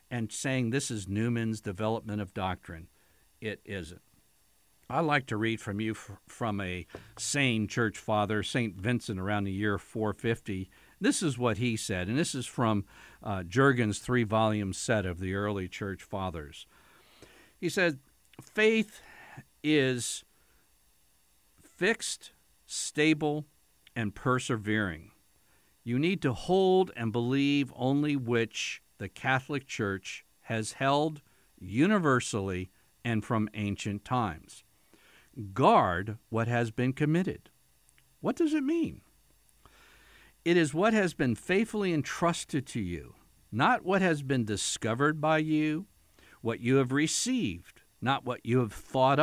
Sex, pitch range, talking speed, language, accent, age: male, 105-150 Hz, 130 wpm, English, American, 60-79